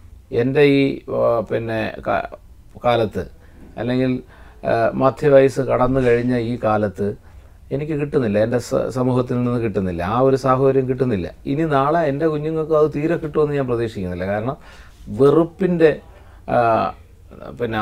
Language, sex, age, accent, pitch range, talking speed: Malayalam, male, 40-59, native, 105-140 Hz, 105 wpm